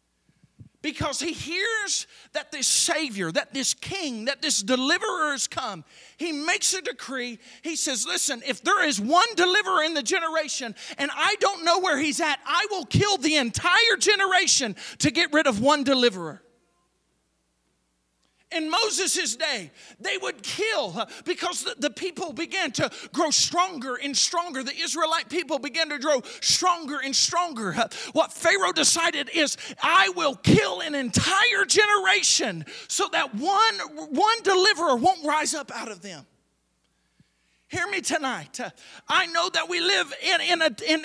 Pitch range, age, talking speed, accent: 275-365 Hz, 40-59, 155 wpm, American